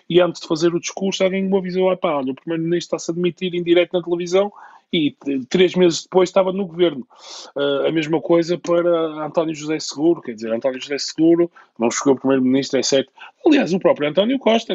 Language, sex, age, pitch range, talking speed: Portuguese, male, 20-39, 125-180 Hz, 215 wpm